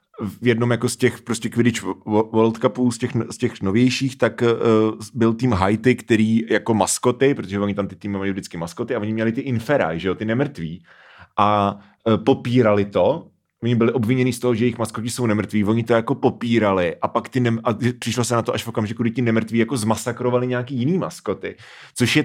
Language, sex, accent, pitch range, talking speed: Czech, male, native, 115-135 Hz, 215 wpm